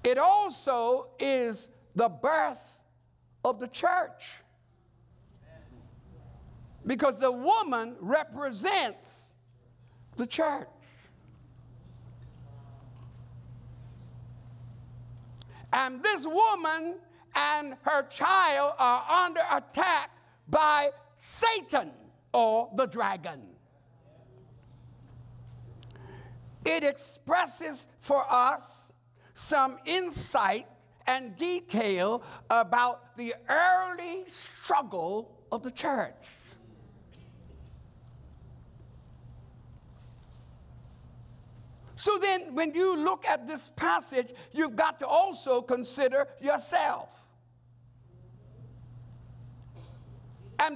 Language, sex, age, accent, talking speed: English, male, 60-79, American, 70 wpm